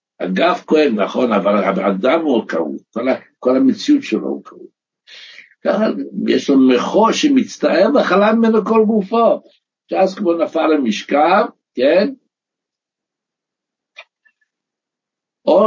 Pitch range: 135-195 Hz